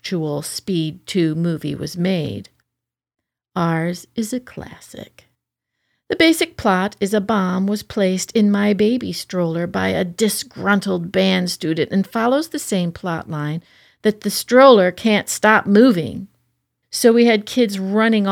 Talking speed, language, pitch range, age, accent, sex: 140 wpm, English, 165-215 Hz, 50-69, American, female